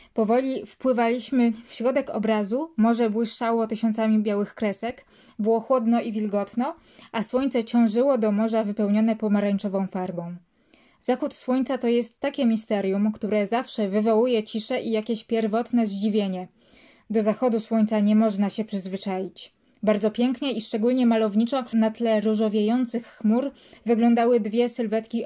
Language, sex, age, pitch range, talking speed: Polish, female, 20-39, 215-245 Hz, 130 wpm